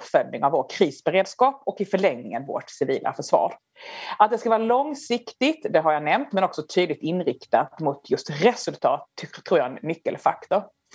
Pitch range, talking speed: 155-230 Hz, 170 wpm